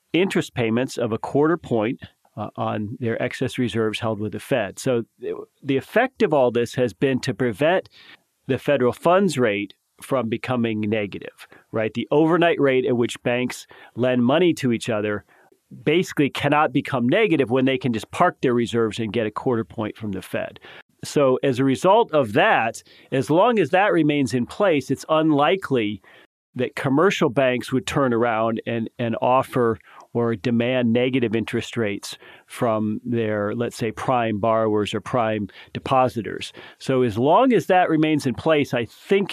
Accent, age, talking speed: American, 40-59, 170 wpm